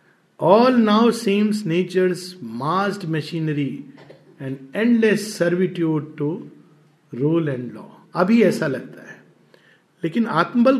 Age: 50-69